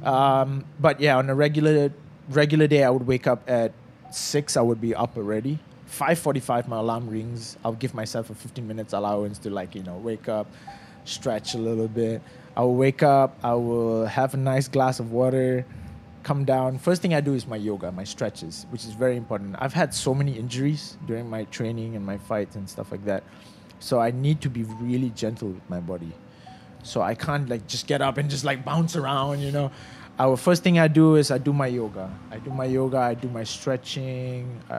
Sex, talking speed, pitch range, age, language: male, 210 wpm, 110-140 Hz, 20-39, English